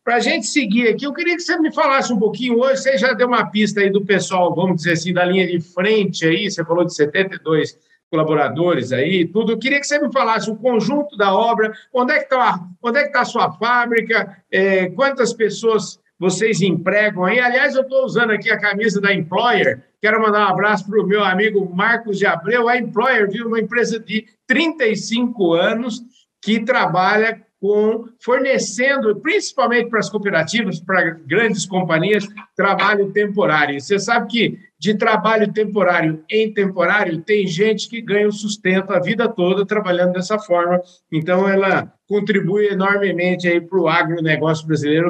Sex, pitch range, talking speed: male, 185-235 Hz, 175 wpm